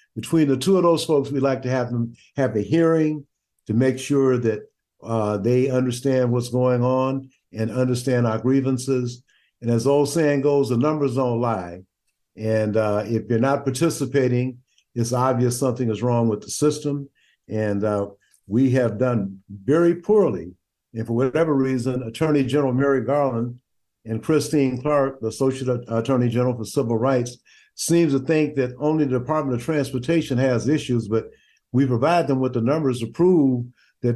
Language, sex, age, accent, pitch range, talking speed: English, male, 50-69, American, 115-140 Hz, 170 wpm